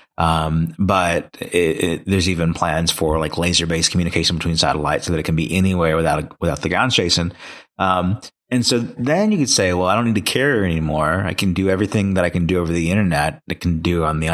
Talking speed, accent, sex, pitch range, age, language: 235 wpm, American, male, 80-95 Hz, 30-49, English